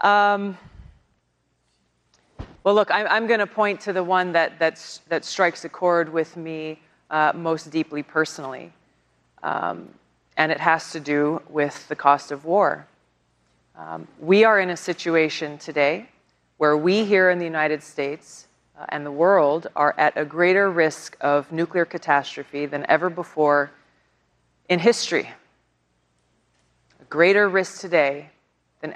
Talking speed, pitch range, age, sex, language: 145 wpm, 145-185 Hz, 30-49, female, English